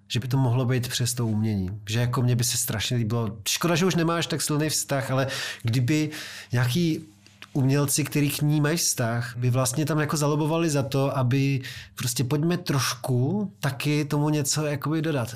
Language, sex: Czech, male